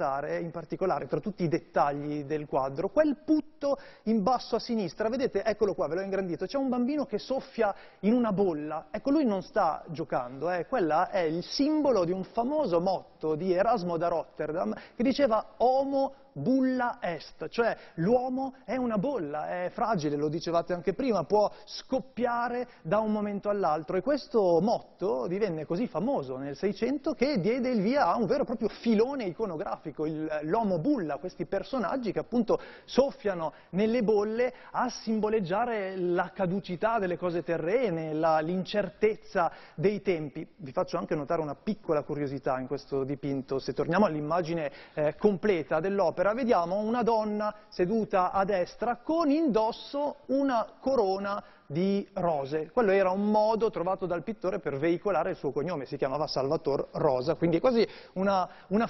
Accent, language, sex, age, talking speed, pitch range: native, Italian, male, 30-49, 160 wpm, 170-235 Hz